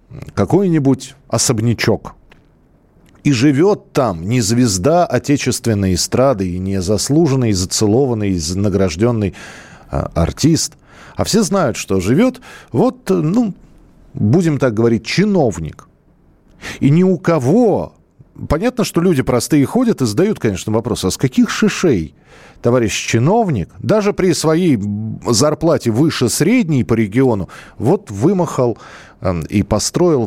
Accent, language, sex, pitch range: native, Russian, male, 115-180 Hz